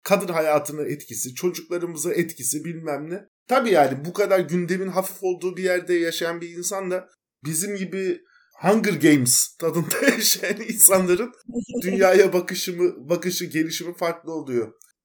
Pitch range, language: 155-190 Hz, Turkish